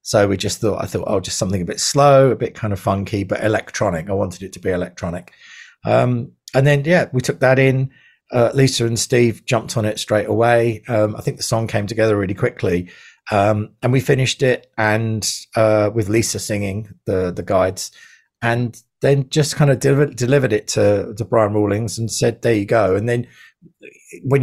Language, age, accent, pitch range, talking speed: English, 40-59, British, 105-125 Hz, 205 wpm